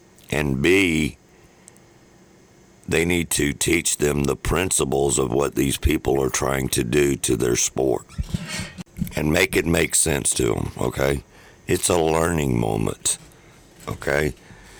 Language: English